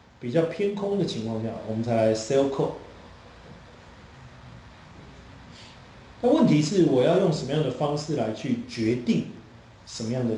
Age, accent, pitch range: 30-49, native, 110-155 Hz